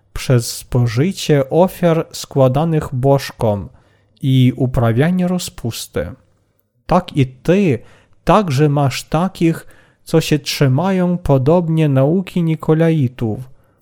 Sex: male